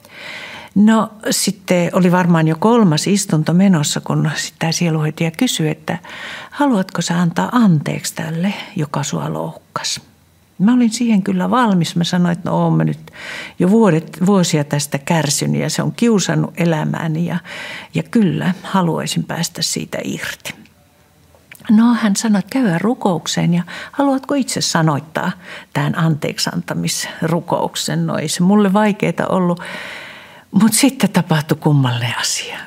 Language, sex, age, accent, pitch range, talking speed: Finnish, female, 60-79, native, 165-215 Hz, 135 wpm